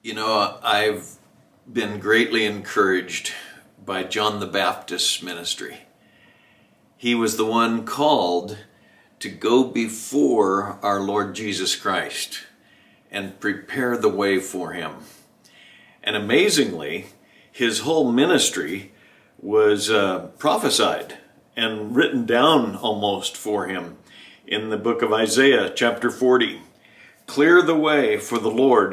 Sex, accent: male, American